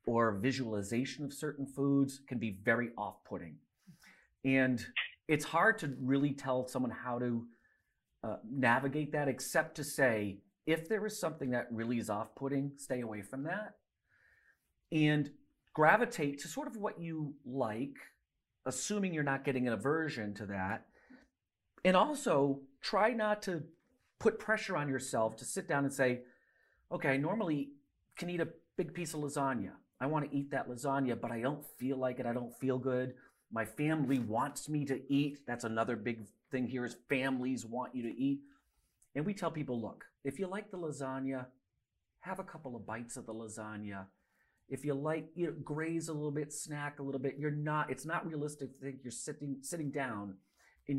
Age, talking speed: 40-59, 180 wpm